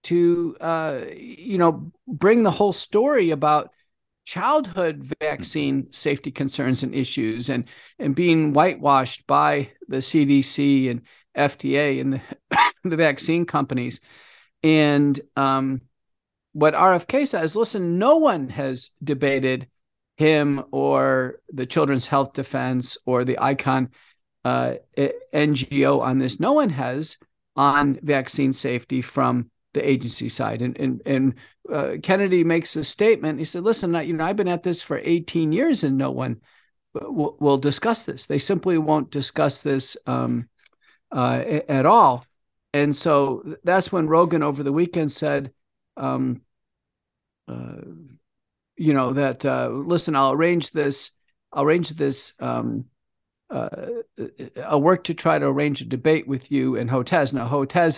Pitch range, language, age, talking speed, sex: 135-165 Hz, English, 40-59, 140 wpm, male